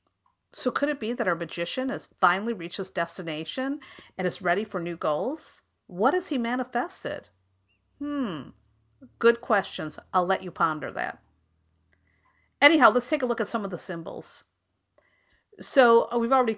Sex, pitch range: female, 175-255 Hz